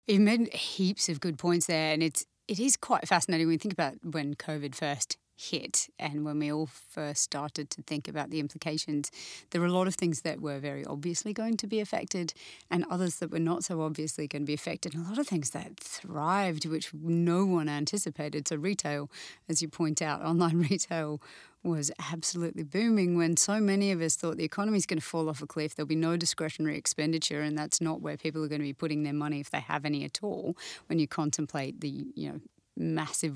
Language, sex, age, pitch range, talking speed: English, female, 30-49, 150-170 Hz, 220 wpm